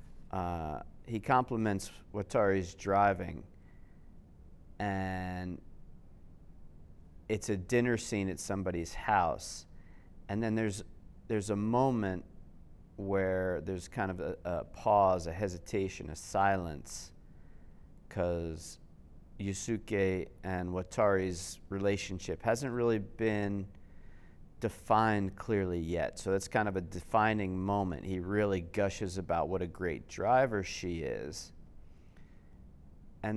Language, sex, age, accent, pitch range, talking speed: English, male, 40-59, American, 85-100 Hz, 105 wpm